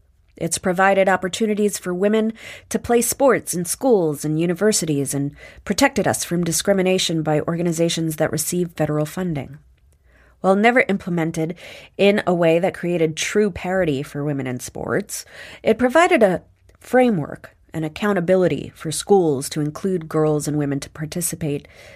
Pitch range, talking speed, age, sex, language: 145-185 Hz, 140 wpm, 30-49, female, English